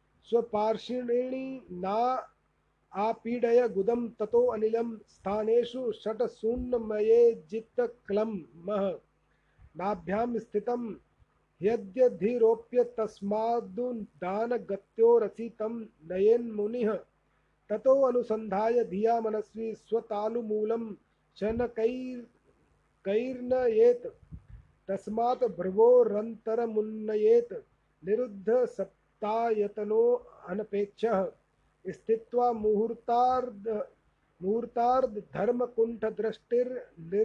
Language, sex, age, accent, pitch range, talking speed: Hindi, male, 40-59, native, 215-245 Hz, 40 wpm